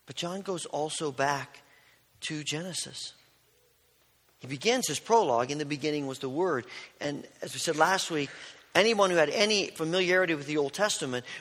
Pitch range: 140-170 Hz